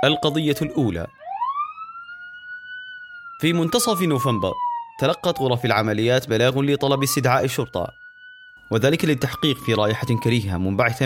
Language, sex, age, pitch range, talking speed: Arabic, male, 30-49, 125-170 Hz, 100 wpm